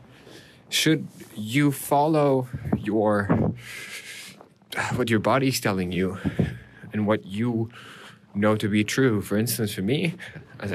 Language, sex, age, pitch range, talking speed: English, male, 20-39, 100-125 Hz, 125 wpm